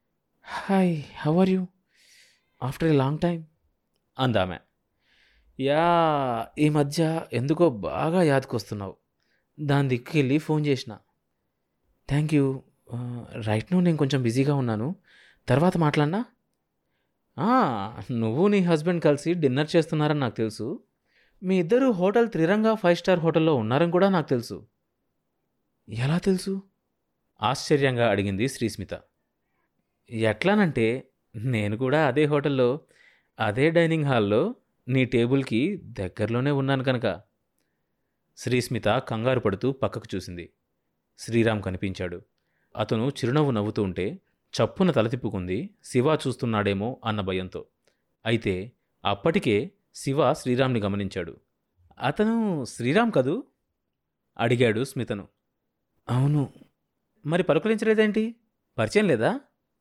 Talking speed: 95 wpm